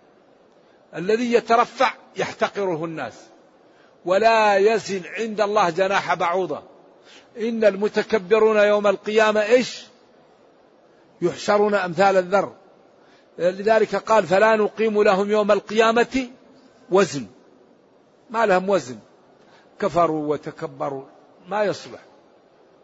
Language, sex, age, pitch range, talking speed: Arabic, male, 60-79, 180-215 Hz, 85 wpm